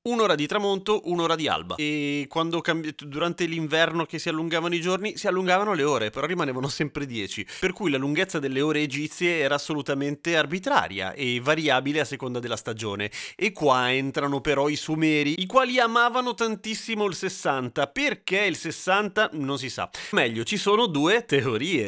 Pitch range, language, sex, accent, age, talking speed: 135-180 Hz, Italian, male, native, 30-49, 170 wpm